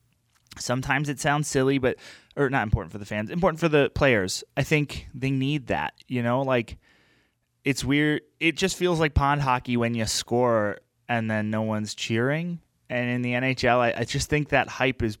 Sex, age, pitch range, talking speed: male, 20-39, 115-150 Hz, 195 wpm